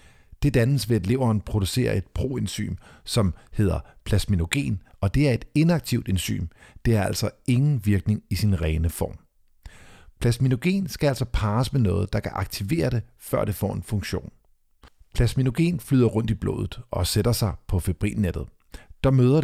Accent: native